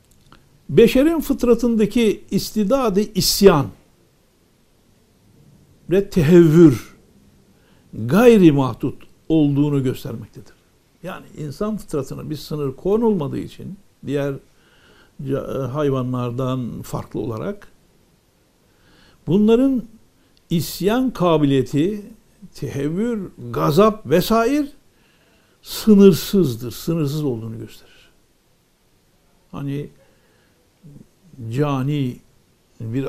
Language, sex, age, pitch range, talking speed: Turkish, male, 60-79, 130-210 Hz, 60 wpm